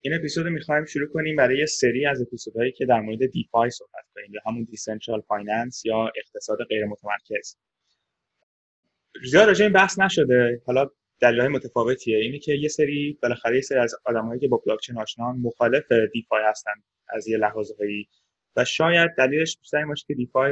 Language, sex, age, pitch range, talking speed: Persian, male, 20-39, 110-145 Hz, 160 wpm